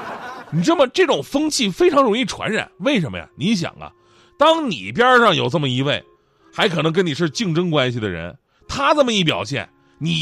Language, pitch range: Chinese, 125-195 Hz